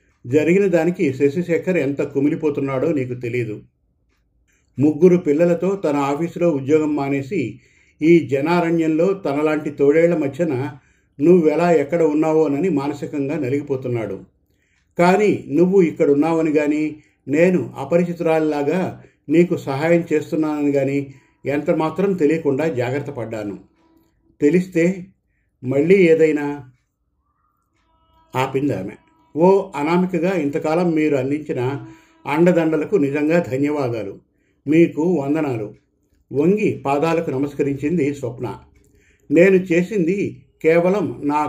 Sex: male